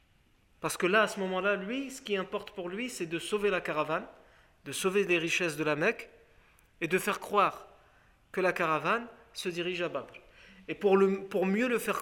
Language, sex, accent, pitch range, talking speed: French, male, French, 155-200 Hz, 210 wpm